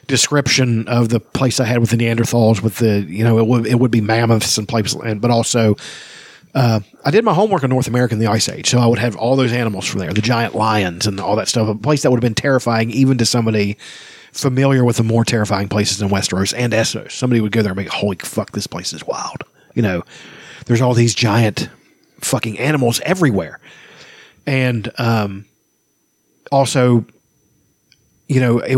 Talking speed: 205 wpm